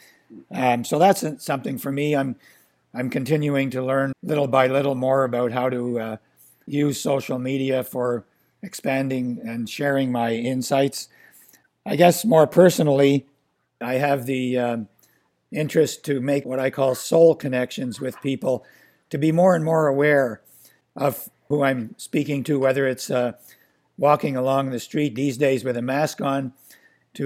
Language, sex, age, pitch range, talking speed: English, male, 60-79, 125-145 Hz, 155 wpm